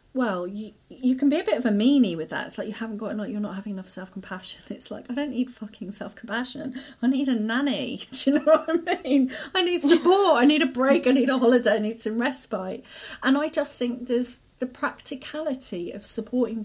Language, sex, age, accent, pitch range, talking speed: English, female, 30-49, British, 195-255 Hz, 240 wpm